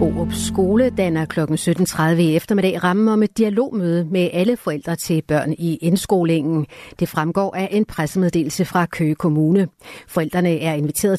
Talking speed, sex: 155 wpm, female